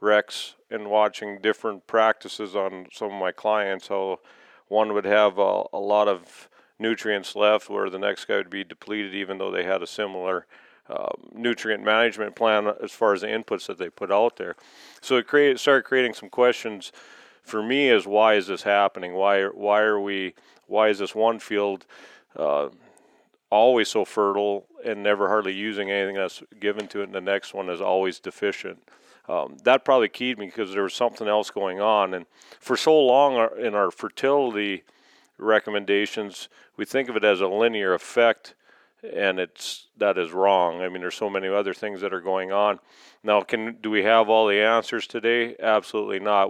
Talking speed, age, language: 190 wpm, 40-59, English